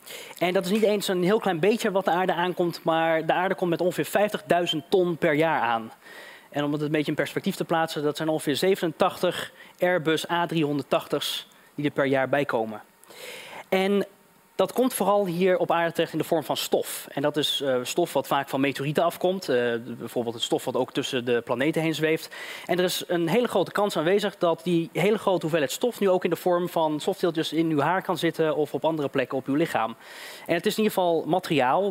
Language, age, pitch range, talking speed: Dutch, 20-39, 145-185 Hz, 220 wpm